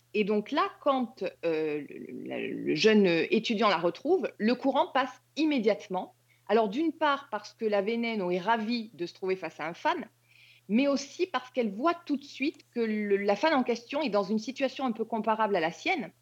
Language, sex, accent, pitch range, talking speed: French, female, French, 195-275 Hz, 205 wpm